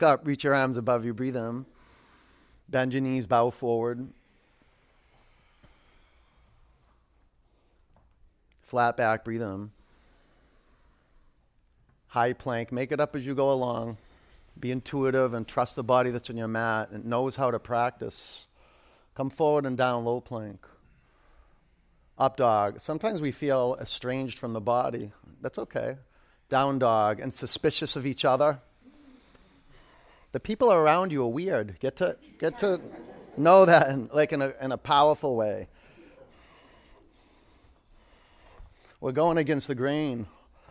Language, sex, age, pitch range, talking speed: English, male, 40-59, 115-135 Hz, 135 wpm